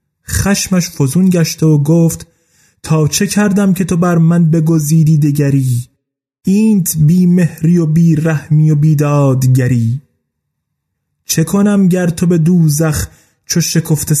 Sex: male